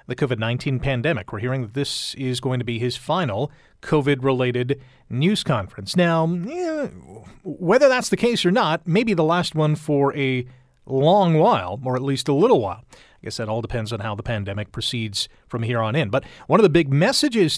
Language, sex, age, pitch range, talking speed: English, male, 30-49, 125-175 Hz, 200 wpm